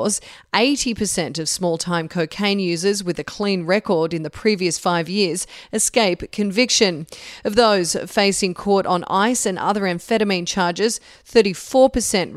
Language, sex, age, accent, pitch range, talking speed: English, female, 30-49, Australian, 175-215 Hz, 130 wpm